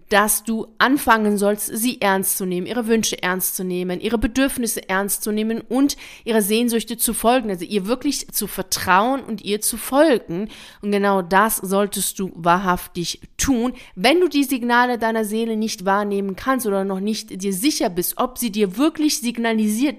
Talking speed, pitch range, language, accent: 175 wpm, 195-235 Hz, German, German